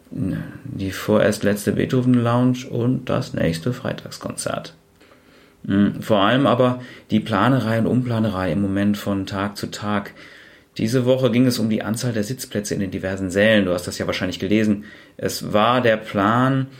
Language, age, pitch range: German, 30-49, 100-125 Hz